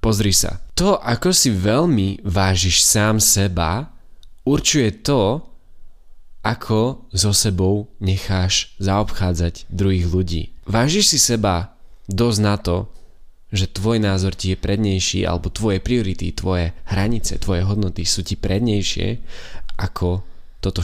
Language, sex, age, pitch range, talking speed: Slovak, male, 20-39, 90-110 Hz, 120 wpm